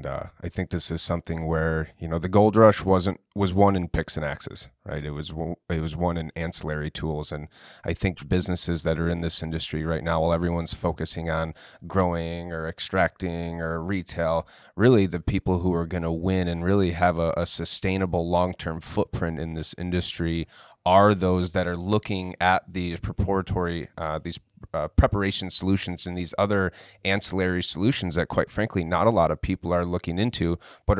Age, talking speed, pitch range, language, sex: 30-49, 190 wpm, 85-100 Hz, English, male